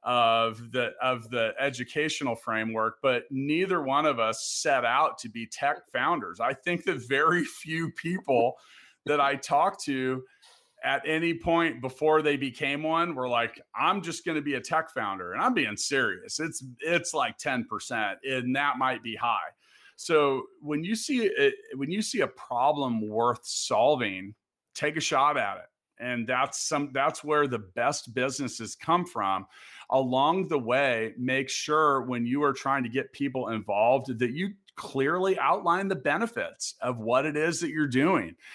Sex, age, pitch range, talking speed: male, 40-59, 125-160 Hz, 170 wpm